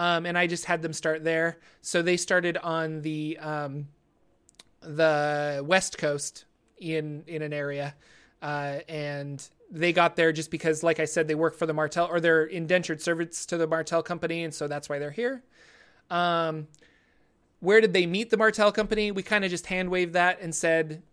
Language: English